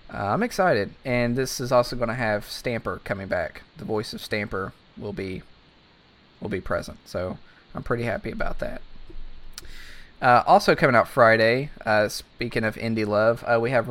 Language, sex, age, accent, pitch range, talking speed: English, male, 20-39, American, 110-125 Hz, 175 wpm